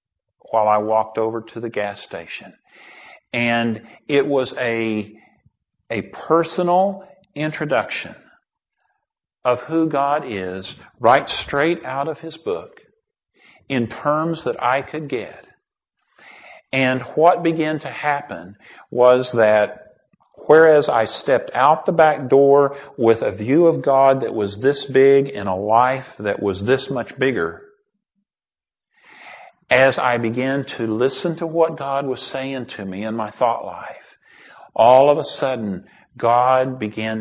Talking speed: 135 wpm